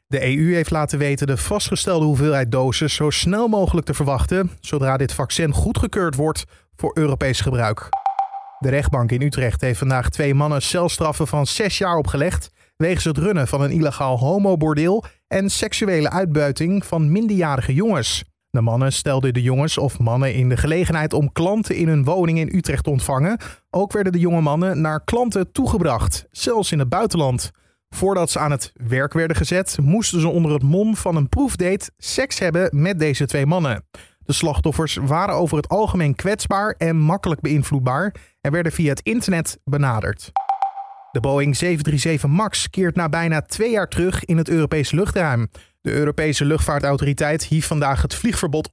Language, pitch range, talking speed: Dutch, 140-180 Hz, 170 wpm